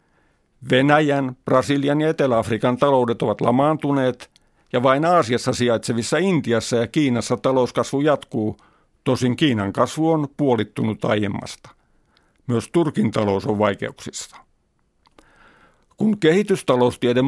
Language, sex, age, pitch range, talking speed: Finnish, male, 50-69, 120-155 Hz, 100 wpm